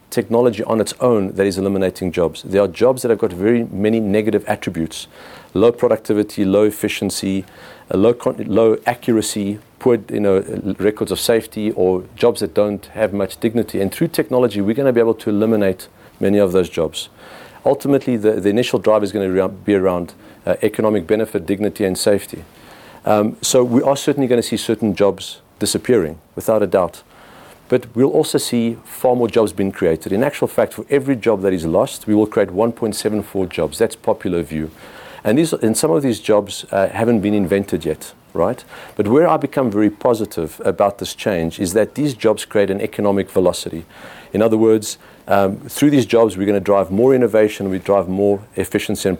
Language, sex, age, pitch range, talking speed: English, male, 40-59, 100-115 Hz, 185 wpm